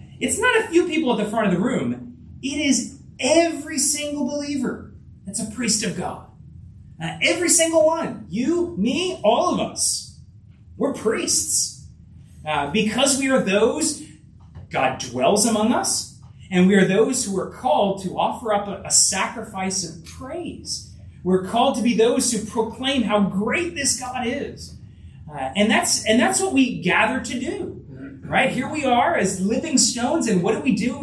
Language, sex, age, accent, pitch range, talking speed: English, male, 30-49, American, 165-250 Hz, 175 wpm